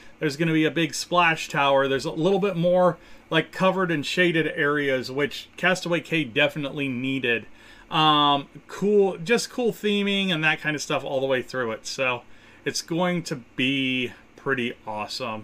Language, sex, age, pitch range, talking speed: English, male, 30-49, 135-180 Hz, 175 wpm